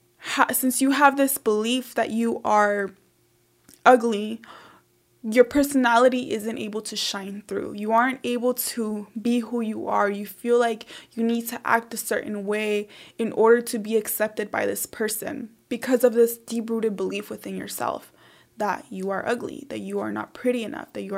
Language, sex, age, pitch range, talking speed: English, female, 20-39, 210-240 Hz, 175 wpm